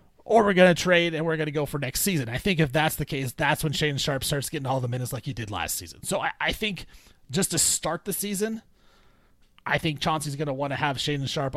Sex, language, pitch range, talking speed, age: male, English, 135-170 Hz, 270 wpm, 30-49